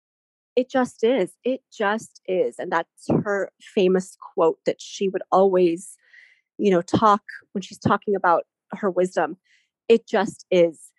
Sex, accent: female, American